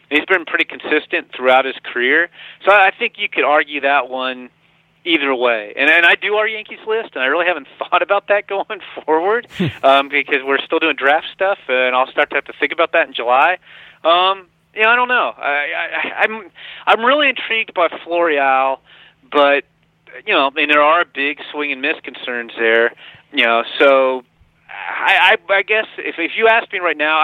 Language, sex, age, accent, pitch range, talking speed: English, male, 30-49, American, 130-175 Hz, 205 wpm